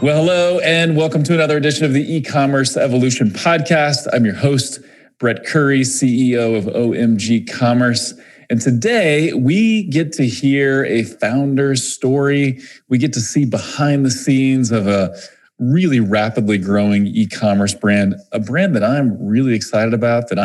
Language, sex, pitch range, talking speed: English, male, 105-140 Hz, 155 wpm